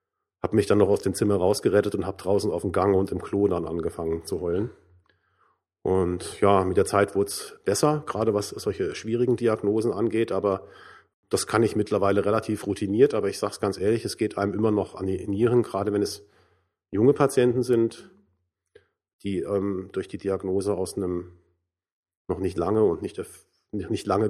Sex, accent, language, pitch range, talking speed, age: male, German, German, 100-125 Hz, 180 wpm, 40-59